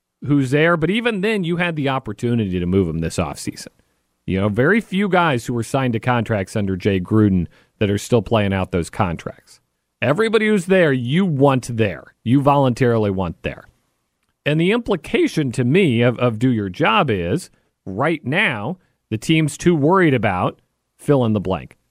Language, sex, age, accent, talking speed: English, male, 40-59, American, 165 wpm